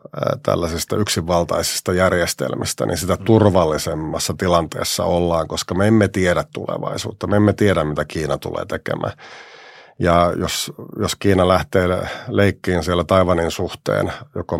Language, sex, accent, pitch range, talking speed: Finnish, male, native, 85-100 Hz, 125 wpm